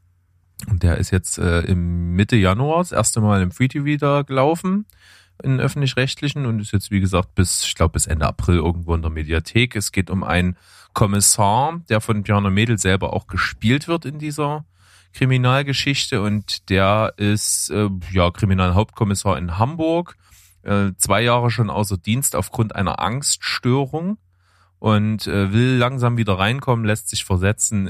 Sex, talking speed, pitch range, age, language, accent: male, 155 wpm, 90-105 Hz, 30-49, German, German